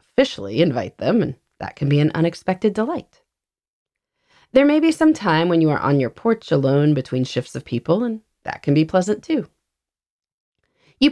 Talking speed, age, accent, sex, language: 180 wpm, 30-49, American, female, English